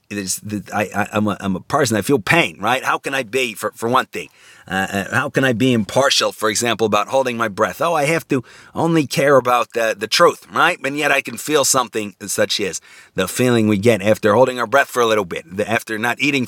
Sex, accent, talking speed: male, American, 245 wpm